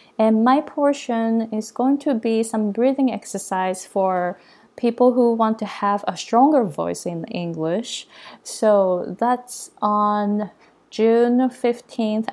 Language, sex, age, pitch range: Japanese, female, 20-39, 195-235 Hz